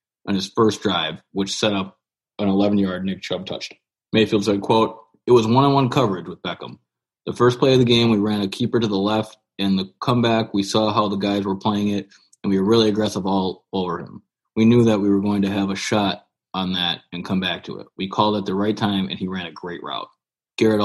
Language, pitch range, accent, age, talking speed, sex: English, 95-110 Hz, American, 20-39, 240 wpm, male